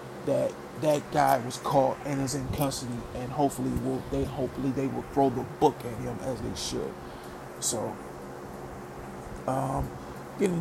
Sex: male